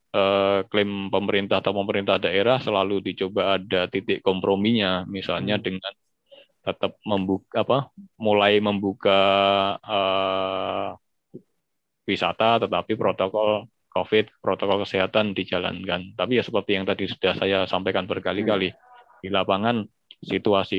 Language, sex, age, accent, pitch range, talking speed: Indonesian, male, 20-39, native, 95-110 Hz, 105 wpm